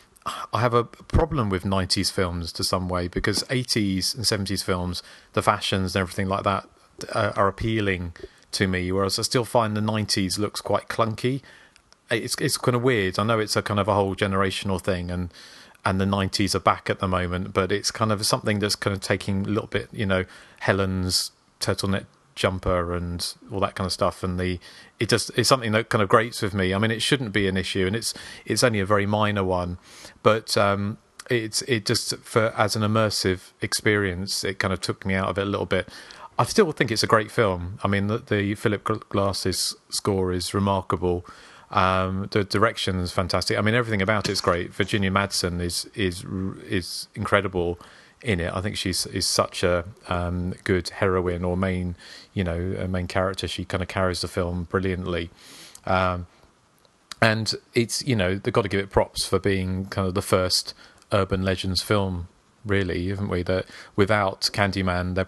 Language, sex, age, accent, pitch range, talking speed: English, male, 30-49, British, 95-105 Hz, 200 wpm